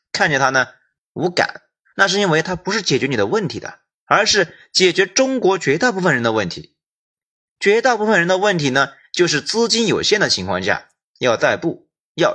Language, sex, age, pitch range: Chinese, male, 30-49, 135-225 Hz